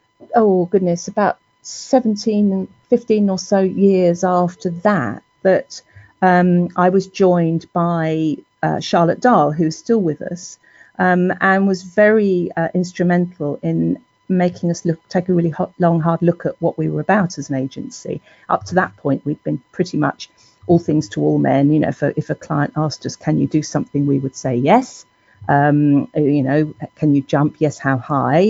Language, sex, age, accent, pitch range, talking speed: English, female, 40-59, British, 145-180 Hz, 185 wpm